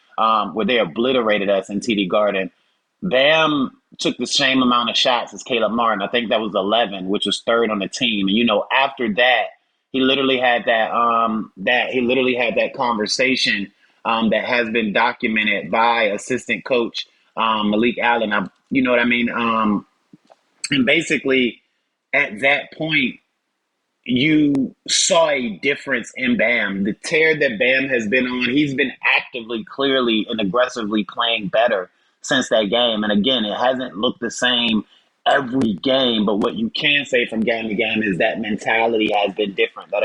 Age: 30-49